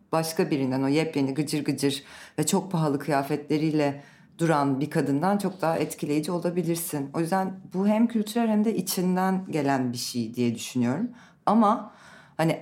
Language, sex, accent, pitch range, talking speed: Turkish, female, native, 140-185 Hz, 150 wpm